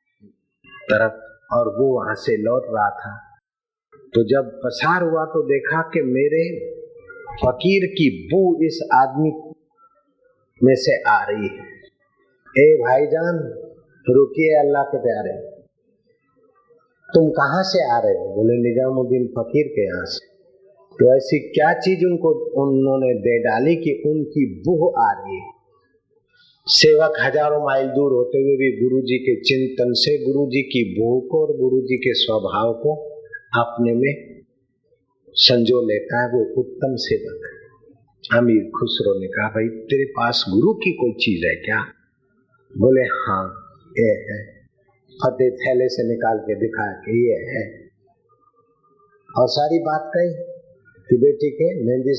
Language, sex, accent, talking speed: Hindi, male, native, 135 wpm